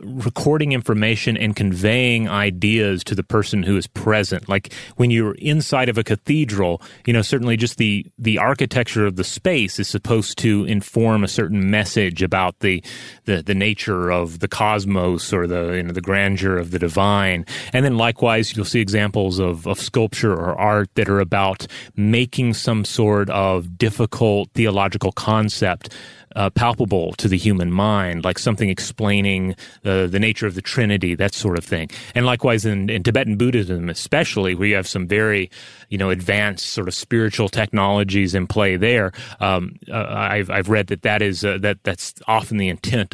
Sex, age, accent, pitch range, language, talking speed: male, 30-49, American, 95-115 Hz, English, 175 wpm